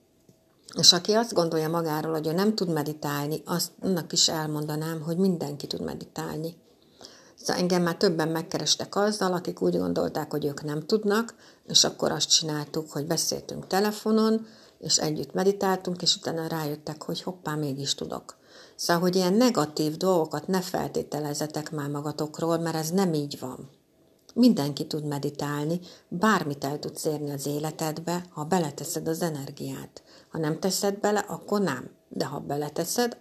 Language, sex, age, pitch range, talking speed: Hungarian, female, 60-79, 150-190 Hz, 150 wpm